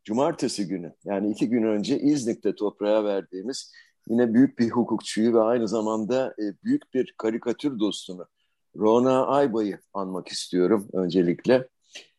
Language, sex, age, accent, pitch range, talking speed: Turkish, male, 50-69, native, 105-140 Hz, 125 wpm